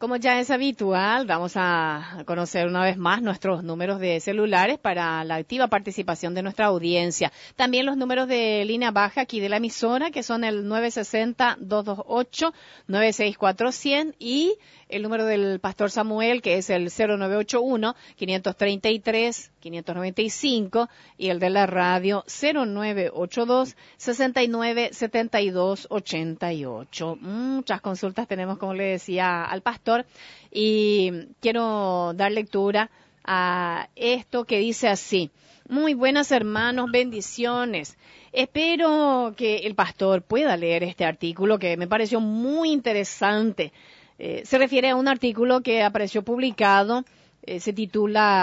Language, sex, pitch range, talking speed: Spanish, female, 185-240 Hz, 125 wpm